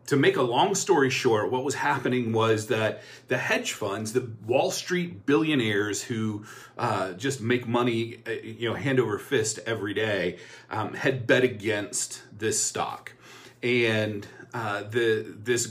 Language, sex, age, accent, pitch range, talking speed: English, male, 30-49, American, 110-130 Hz, 155 wpm